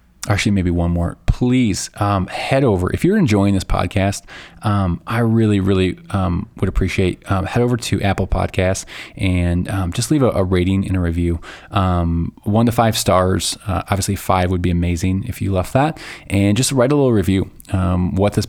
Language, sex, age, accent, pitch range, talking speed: English, male, 20-39, American, 90-105 Hz, 200 wpm